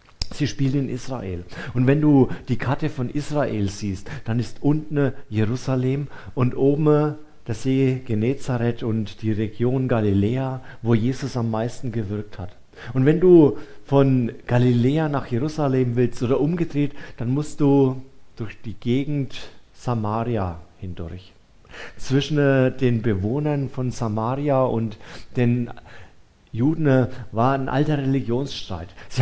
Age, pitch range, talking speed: 40-59, 110-140 Hz, 125 wpm